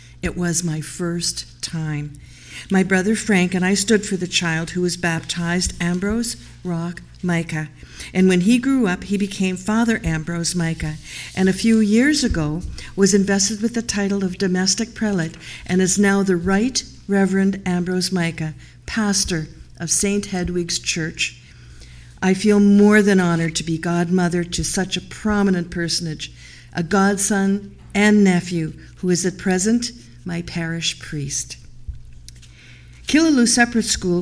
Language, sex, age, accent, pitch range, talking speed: English, female, 50-69, American, 165-200 Hz, 145 wpm